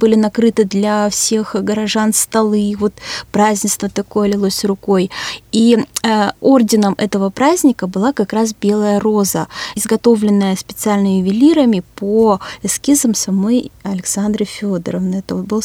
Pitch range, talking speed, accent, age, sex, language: 195-225 Hz, 125 wpm, native, 20-39, female, Russian